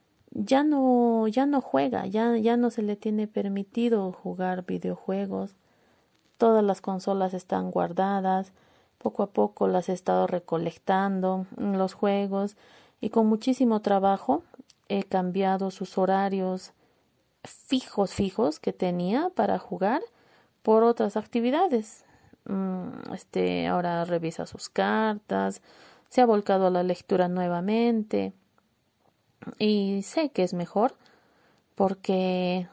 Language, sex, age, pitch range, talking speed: Spanish, female, 30-49, 185-230 Hz, 115 wpm